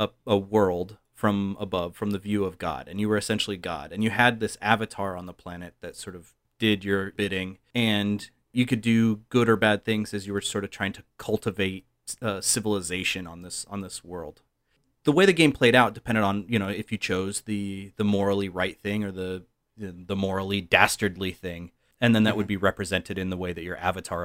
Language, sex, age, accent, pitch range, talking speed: English, male, 30-49, American, 95-120 Hz, 215 wpm